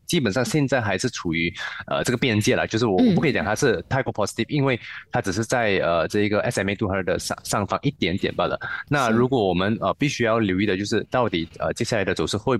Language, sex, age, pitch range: Chinese, male, 20-39, 95-125 Hz